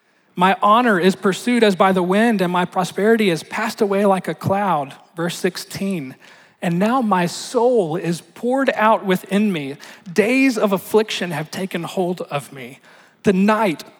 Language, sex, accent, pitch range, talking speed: English, male, American, 165-205 Hz, 165 wpm